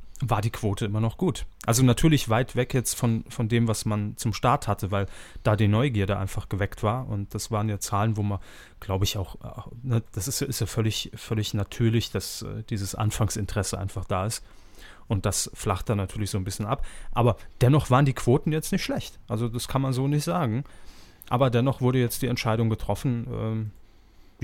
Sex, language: male, German